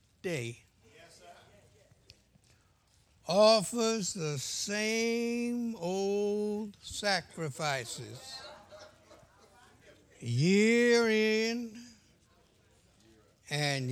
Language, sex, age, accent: English, male, 60-79, American